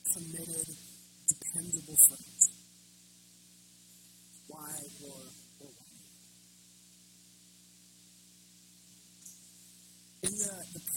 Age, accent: 20-39, American